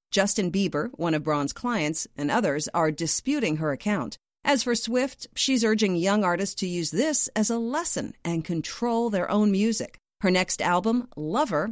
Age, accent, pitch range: 40-59, American, 165-235 Hz